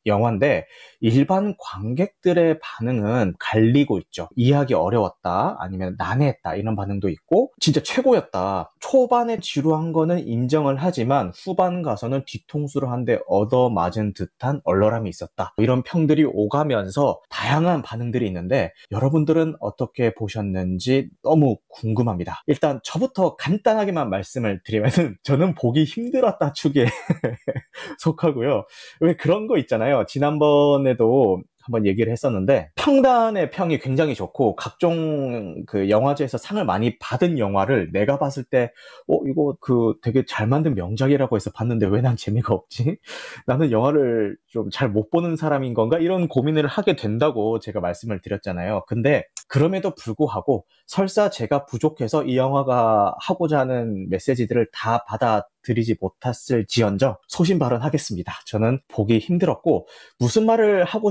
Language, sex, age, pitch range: Korean, male, 30-49, 110-155 Hz